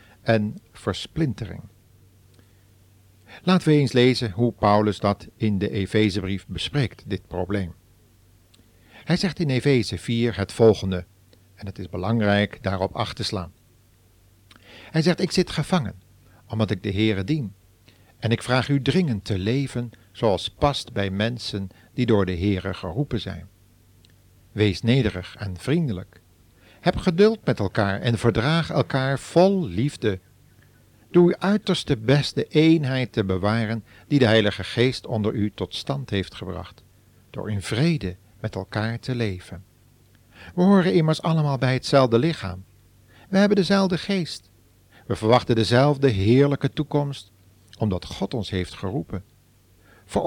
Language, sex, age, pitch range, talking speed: Dutch, male, 50-69, 95-135 Hz, 140 wpm